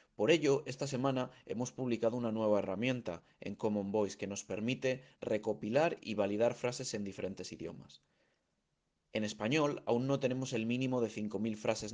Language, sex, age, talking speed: Spanish, male, 30-49, 160 wpm